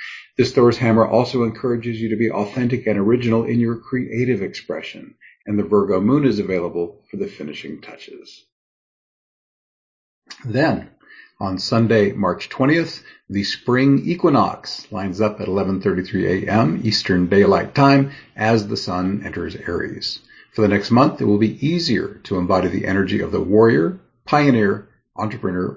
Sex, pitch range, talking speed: male, 95-120 Hz, 145 wpm